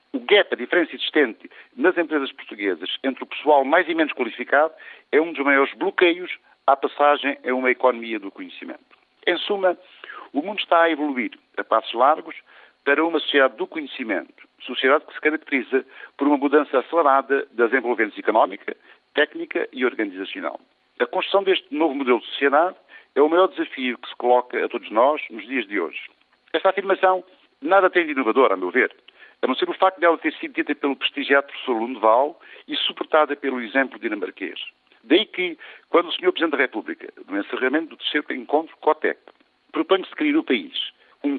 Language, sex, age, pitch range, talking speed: Portuguese, male, 60-79, 135-205 Hz, 180 wpm